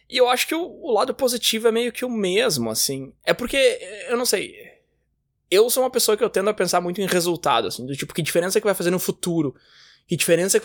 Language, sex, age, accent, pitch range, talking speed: Portuguese, male, 20-39, Brazilian, 155-220 Hz, 260 wpm